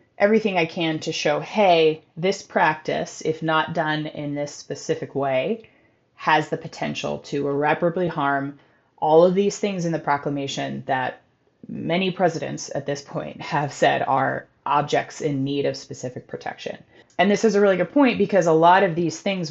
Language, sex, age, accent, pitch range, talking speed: English, female, 30-49, American, 140-175 Hz, 170 wpm